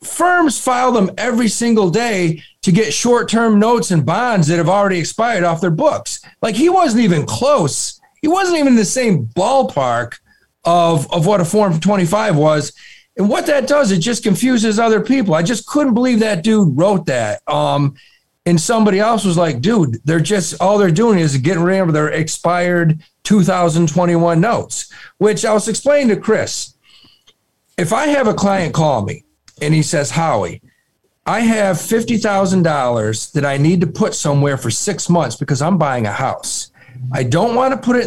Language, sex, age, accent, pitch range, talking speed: English, male, 40-59, American, 155-215 Hz, 180 wpm